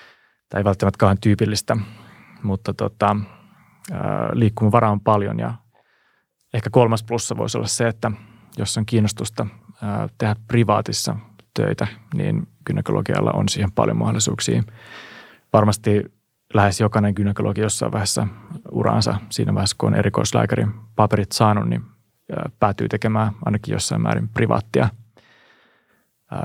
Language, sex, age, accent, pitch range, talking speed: Finnish, male, 30-49, native, 105-115 Hz, 120 wpm